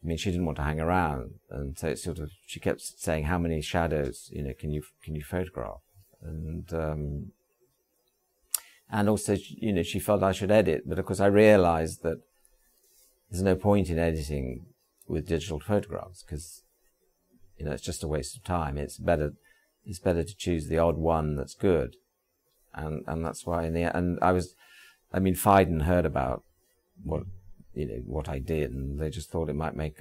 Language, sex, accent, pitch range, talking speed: English, male, British, 75-95 Hz, 200 wpm